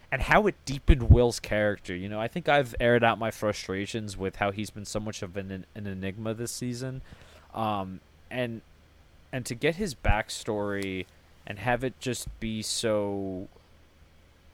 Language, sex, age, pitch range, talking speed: English, male, 20-39, 95-110 Hz, 170 wpm